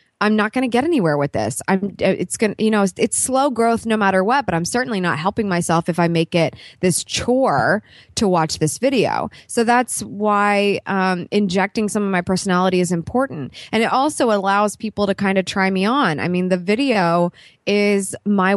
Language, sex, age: English, female, 20-39